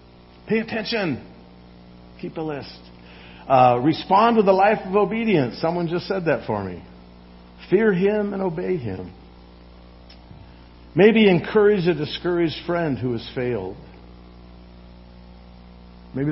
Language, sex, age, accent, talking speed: English, male, 50-69, American, 120 wpm